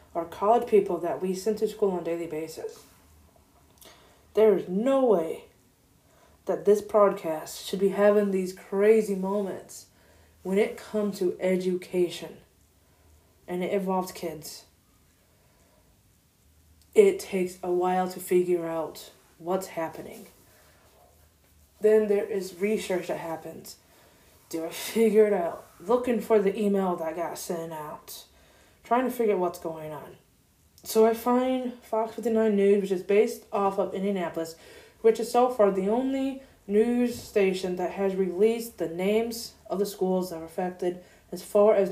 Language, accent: English, American